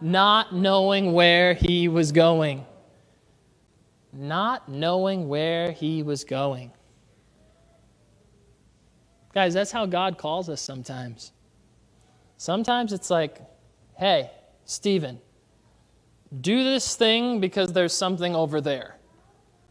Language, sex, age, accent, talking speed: English, male, 20-39, American, 95 wpm